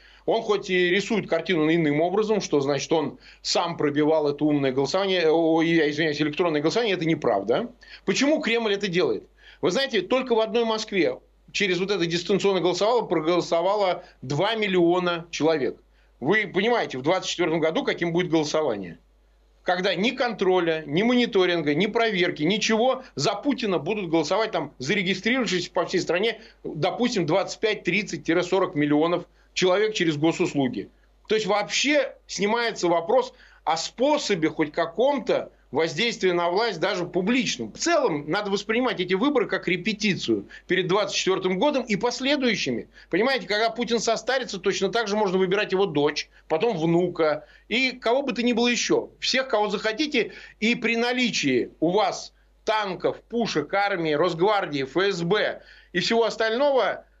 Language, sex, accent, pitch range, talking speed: Ukrainian, male, native, 170-230 Hz, 140 wpm